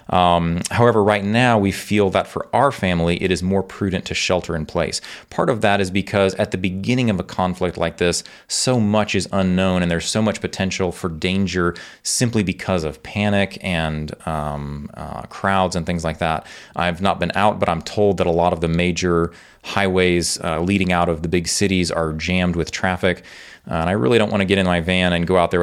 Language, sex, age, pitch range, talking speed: English, male, 30-49, 85-100 Hz, 220 wpm